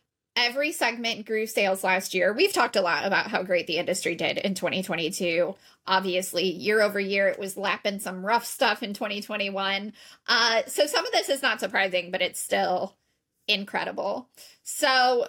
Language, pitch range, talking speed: English, 195-235 Hz, 170 wpm